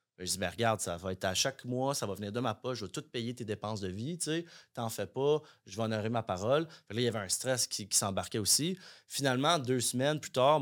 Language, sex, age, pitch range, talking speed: French, male, 30-49, 105-130 Hz, 290 wpm